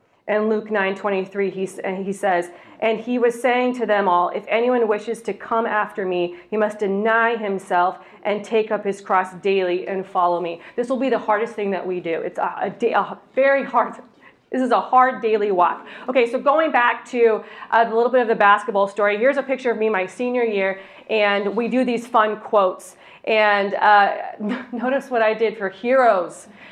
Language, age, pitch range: English, 40-59, 195-245 Hz